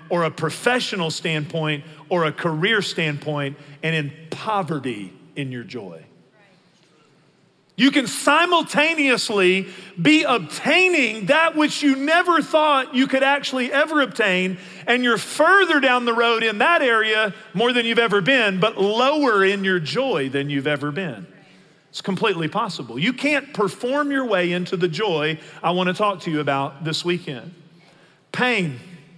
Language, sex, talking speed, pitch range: English, male, 150 wpm, 165-235 Hz